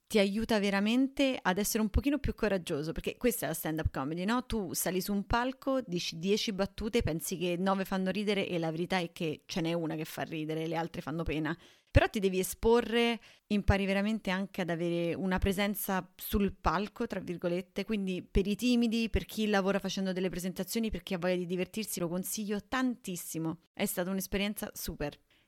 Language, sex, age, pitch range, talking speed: Italian, female, 30-49, 165-205 Hz, 195 wpm